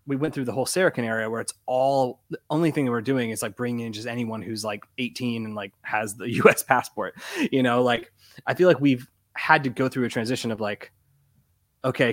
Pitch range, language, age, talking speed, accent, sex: 115-140 Hz, English, 20-39, 235 wpm, American, male